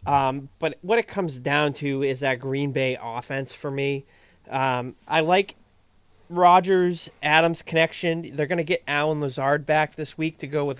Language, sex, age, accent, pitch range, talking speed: English, male, 30-49, American, 135-170 Hz, 170 wpm